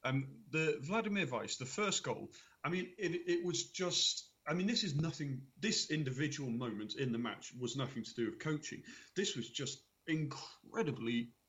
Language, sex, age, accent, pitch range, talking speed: English, male, 40-59, British, 115-160 Hz, 180 wpm